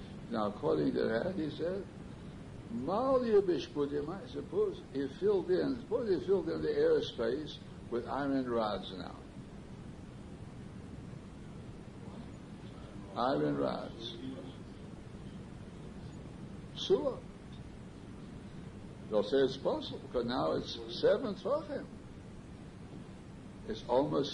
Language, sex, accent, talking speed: English, male, American, 85 wpm